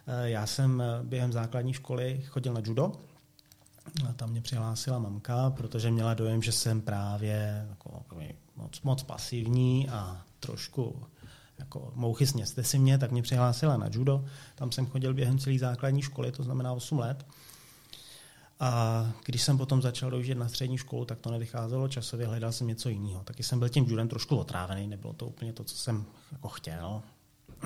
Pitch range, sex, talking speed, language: 115-135 Hz, male, 170 wpm, Czech